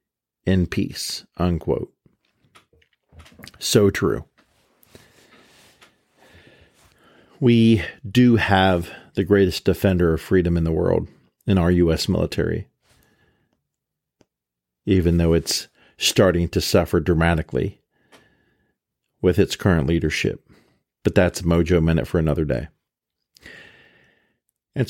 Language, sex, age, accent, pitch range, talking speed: English, male, 50-69, American, 85-105 Hz, 95 wpm